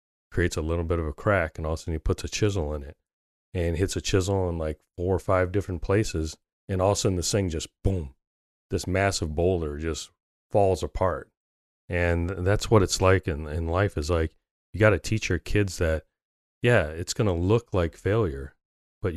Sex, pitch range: male, 80-95 Hz